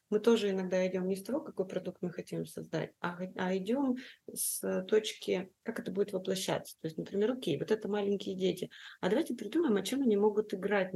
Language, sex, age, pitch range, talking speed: Russian, female, 30-49, 185-225 Hz, 210 wpm